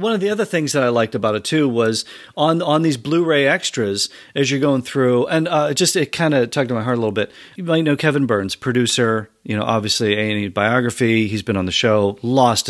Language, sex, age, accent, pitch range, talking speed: English, male, 40-59, American, 95-130 Hz, 245 wpm